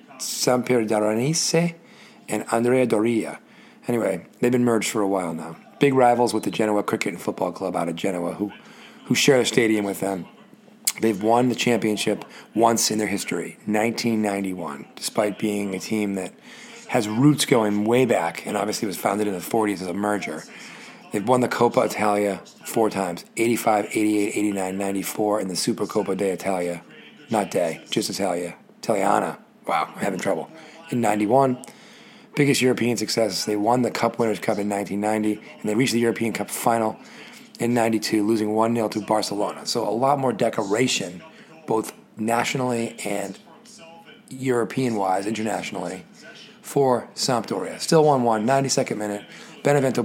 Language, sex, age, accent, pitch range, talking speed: English, male, 40-59, American, 105-125 Hz, 155 wpm